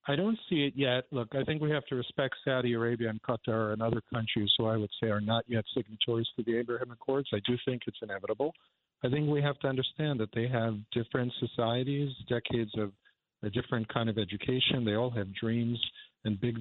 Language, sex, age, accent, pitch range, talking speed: English, male, 50-69, American, 110-125 Hz, 215 wpm